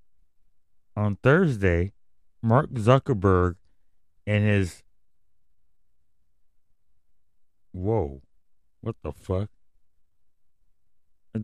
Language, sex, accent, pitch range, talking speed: English, male, American, 90-125 Hz, 60 wpm